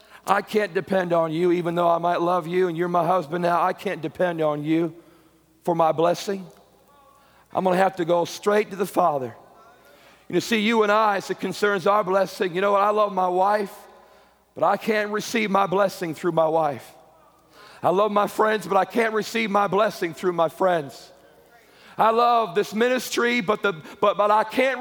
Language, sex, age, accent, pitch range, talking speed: English, male, 40-59, American, 190-285 Hz, 200 wpm